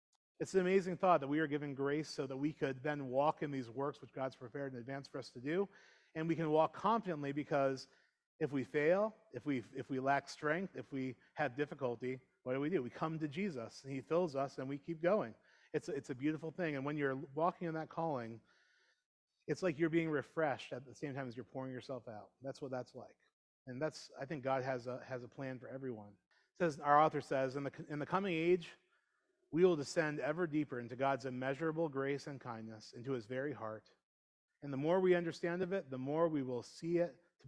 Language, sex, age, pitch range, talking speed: English, male, 30-49, 135-165 Hz, 230 wpm